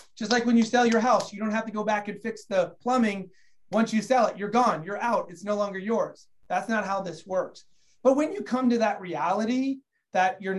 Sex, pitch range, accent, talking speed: male, 175-215 Hz, American, 245 wpm